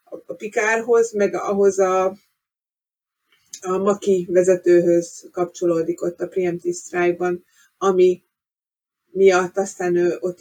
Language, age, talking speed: Hungarian, 30-49, 100 wpm